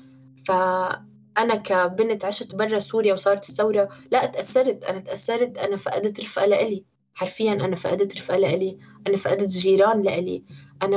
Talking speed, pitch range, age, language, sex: 140 wpm, 195-220 Hz, 20-39, Arabic, female